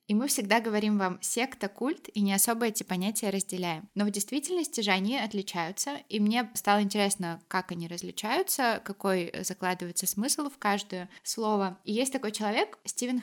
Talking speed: 165 wpm